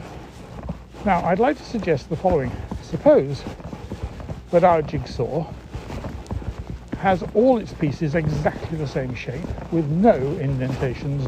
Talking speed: 115 wpm